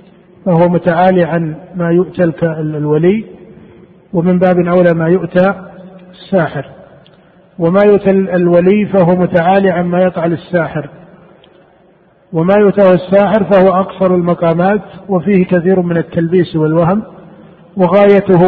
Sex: male